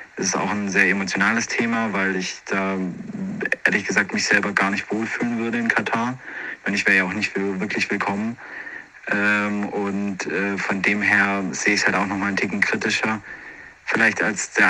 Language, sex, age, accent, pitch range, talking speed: German, male, 40-59, German, 95-105 Hz, 180 wpm